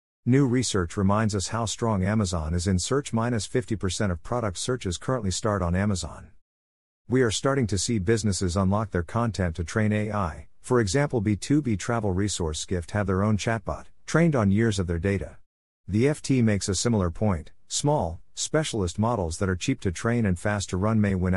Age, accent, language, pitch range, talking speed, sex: 50-69, American, English, 90-115 Hz, 190 wpm, male